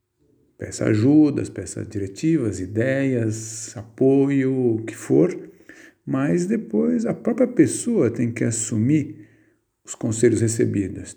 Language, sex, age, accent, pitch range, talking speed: Portuguese, male, 50-69, Brazilian, 110-155 Hz, 105 wpm